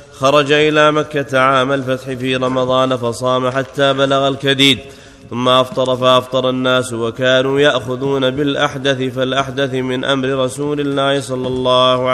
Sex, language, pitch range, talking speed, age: male, Arabic, 130-135 Hz, 125 wpm, 30-49